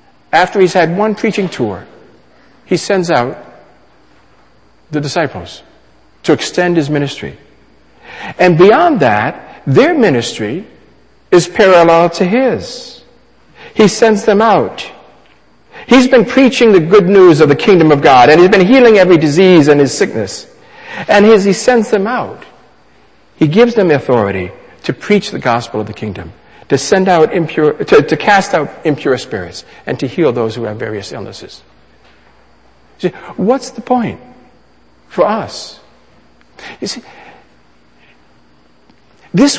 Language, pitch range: English, 145-230 Hz